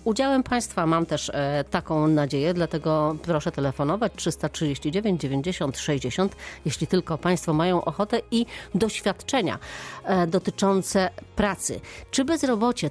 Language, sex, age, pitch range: Polish, female, 40-59, 155-205 Hz